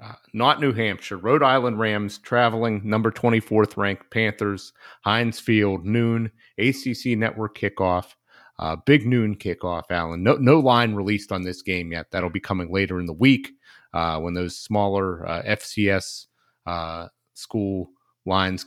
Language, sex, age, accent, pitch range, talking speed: English, male, 30-49, American, 90-105 Hz, 150 wpm